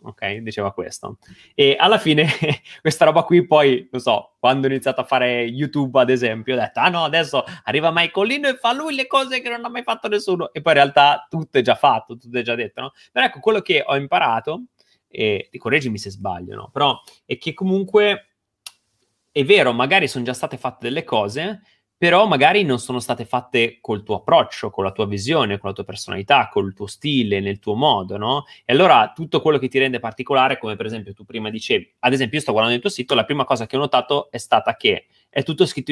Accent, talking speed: native, 225 wpm